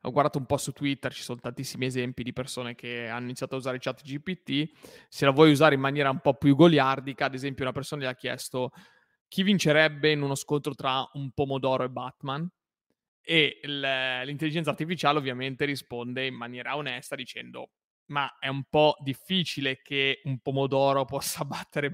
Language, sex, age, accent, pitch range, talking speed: Italian, male, 20-39, native, 135-155 Hz, 180 wpm